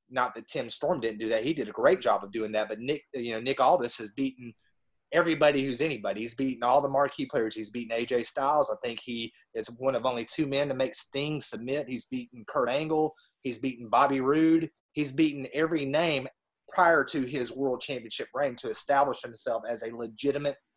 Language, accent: English, American